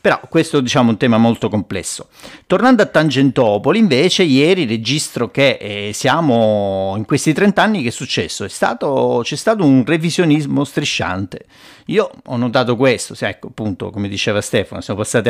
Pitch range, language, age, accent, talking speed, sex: 105-140 Hz, Italian, 50-69, native, 145 wpm, male